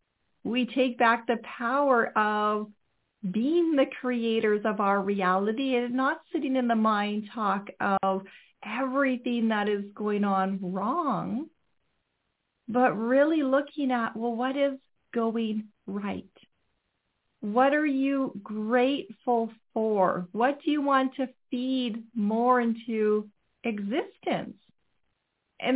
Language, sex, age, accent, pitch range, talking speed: English, female, 40-59, American, 220-275 Hz, 115 wpm